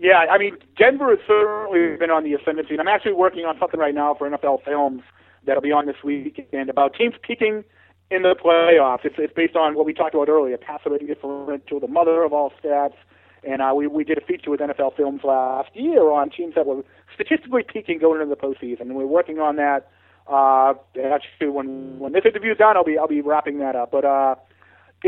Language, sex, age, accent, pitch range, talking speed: English, male, 30-49, American, 140-175 Hz, 220 wpm